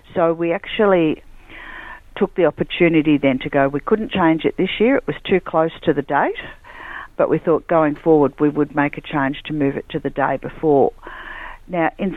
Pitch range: 140-170 Hz